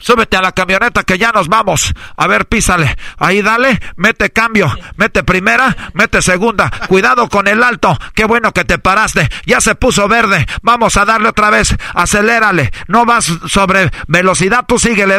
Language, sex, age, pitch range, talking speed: Spanish, male, 50-69, 195-235 Hz, 175 wpm